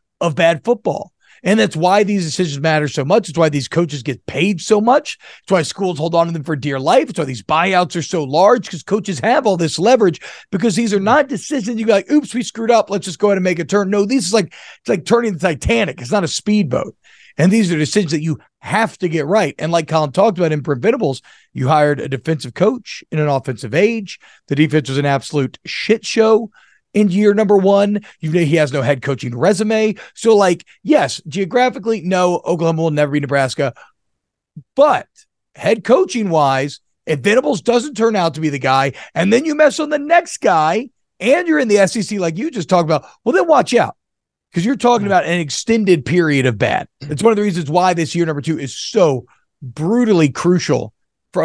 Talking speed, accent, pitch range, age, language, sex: 220 wpm, American, 150-215 Hz, 40-59, English, male